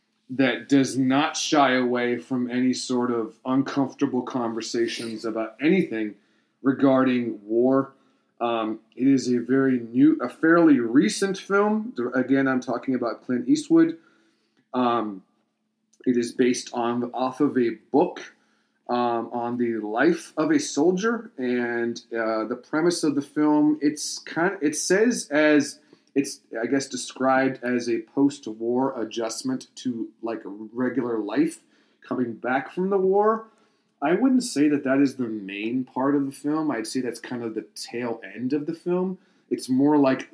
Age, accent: 30-49, American